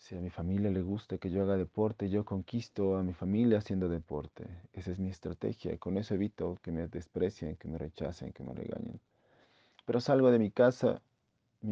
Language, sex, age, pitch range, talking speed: Spanish, male, 40-59, 90-115 Hz, 205 wpm